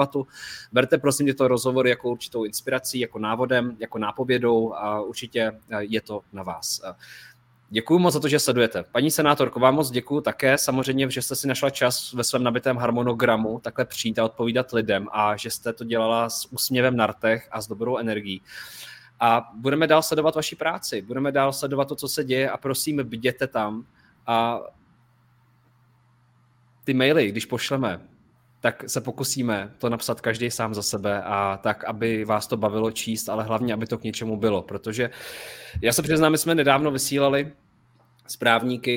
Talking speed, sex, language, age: 170 wpm, male, Czech, 20-39